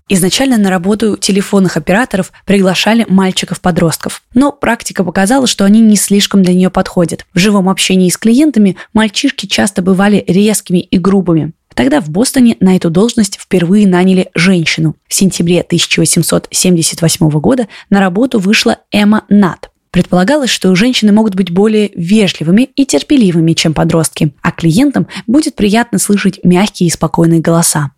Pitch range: 175-215 Hz